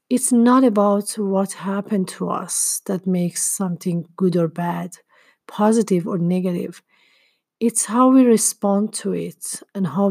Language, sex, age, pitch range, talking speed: English, female, 40-59, 180-220 Hz, 140 wpm